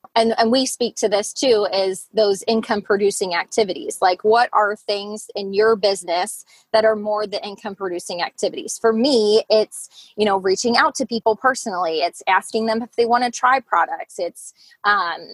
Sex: female